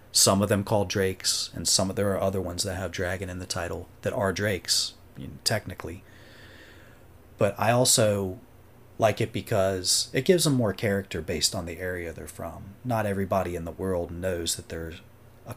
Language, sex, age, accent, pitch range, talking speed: English, male, 30-49, American, 90-115 Hz, 185 wpm